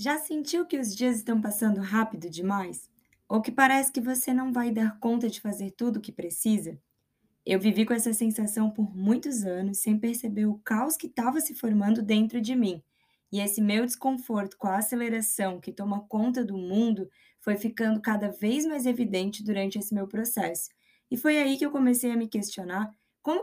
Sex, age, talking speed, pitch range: female, 20-39, 190 wpm, 205-250 Hz